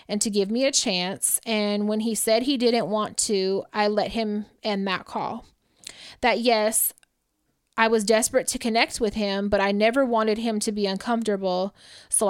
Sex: female